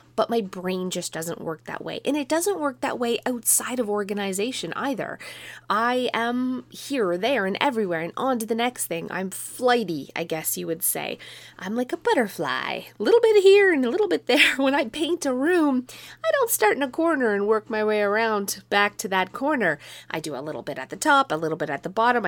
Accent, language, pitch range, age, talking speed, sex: American, English, 185-260 Hz, 20-39, 230 wpm, female